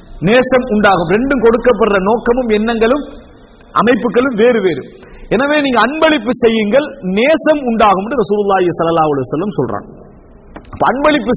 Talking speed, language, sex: 155 wpm, English, male